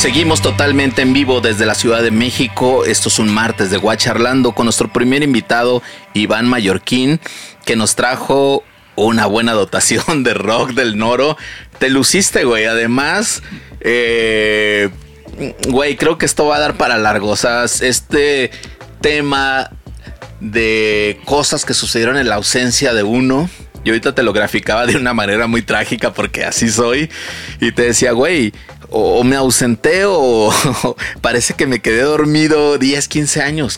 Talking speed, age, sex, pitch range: 155 wpm, 30-49, male, 105-130 Hz